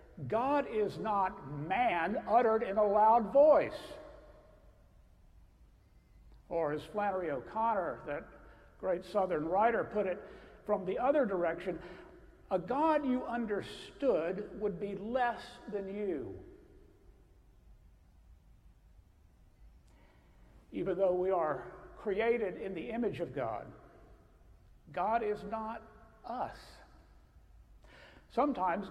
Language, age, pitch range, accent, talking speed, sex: English, 60-79, 180-235 Hz, American, 100 wpm, male